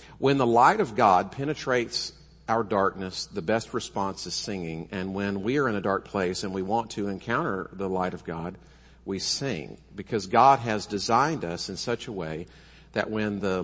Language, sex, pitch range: English, male, 100-135 Hz